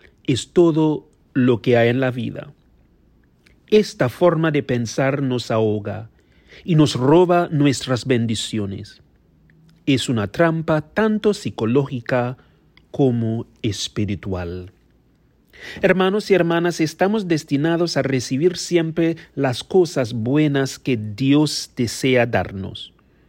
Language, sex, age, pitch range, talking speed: English, male, 40-59, 105-145 Hz, 105 wpm